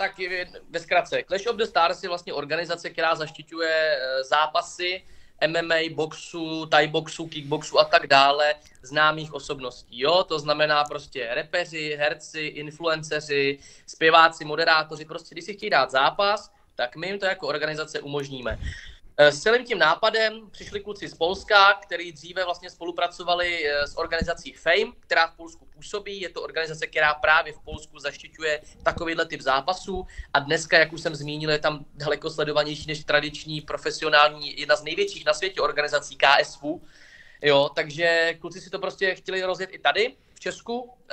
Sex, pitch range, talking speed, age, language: male, 150-180 Hz, 155 wpm, 20-39, Slovak